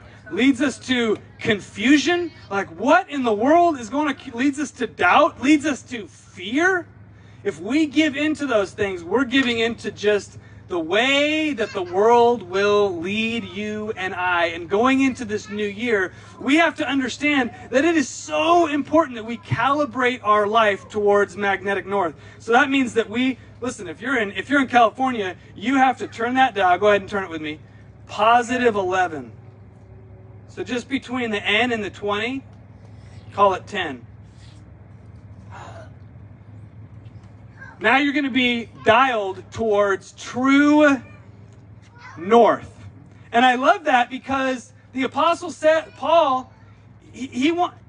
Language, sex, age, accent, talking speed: English, male, 30-49, American, 155 wpm